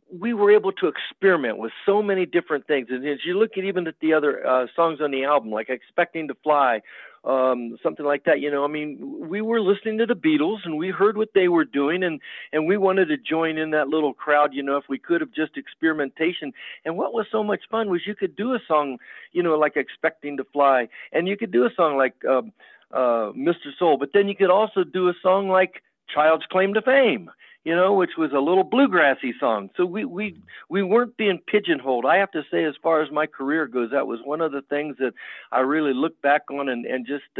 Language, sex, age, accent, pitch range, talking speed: English, male, 50-69, American, 145-200 Hz, 240 wpm